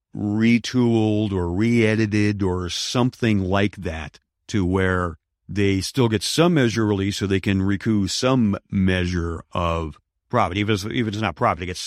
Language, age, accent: English, 40-59, American